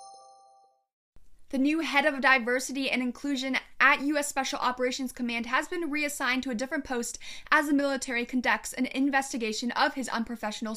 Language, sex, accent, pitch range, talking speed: English, female, American, 230-280 Hz, 155 wpm